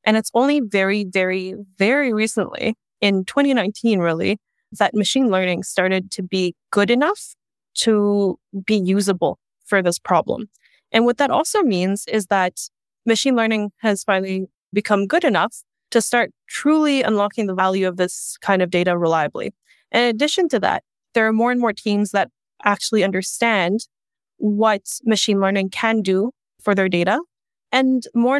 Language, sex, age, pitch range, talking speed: English, female, 20-39, 190-235 Hz, 155 wpm